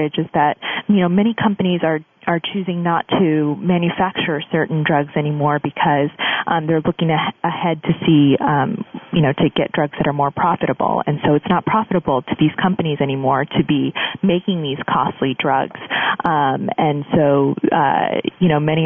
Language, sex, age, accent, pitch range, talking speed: English, female, 30-49, American, 145-185 Hz, 175 wpm